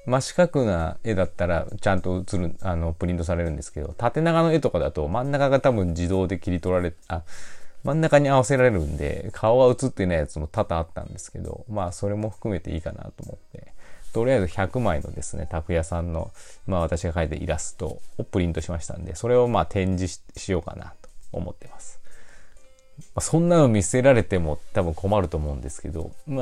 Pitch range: 85-120 Hz